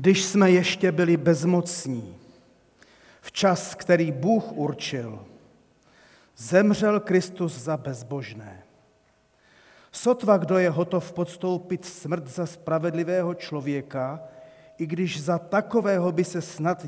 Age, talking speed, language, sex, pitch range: 40-59, 105 wpm, Czech, male, 150-185 Hz